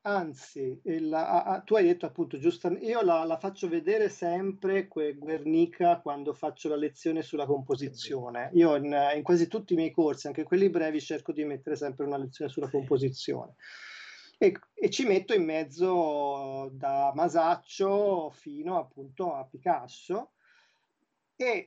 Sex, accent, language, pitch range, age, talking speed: male, native, Italian, 150-215 Hz, 40-59, 150 wpm